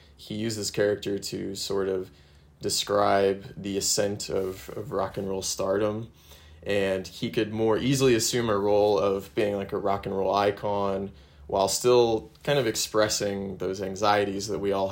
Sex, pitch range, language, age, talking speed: male, 95-110 Hz, English, 20-39, 170 wpm